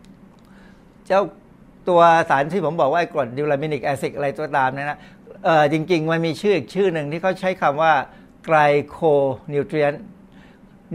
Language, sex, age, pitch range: Thai, male, 60-79, 140-185 Hz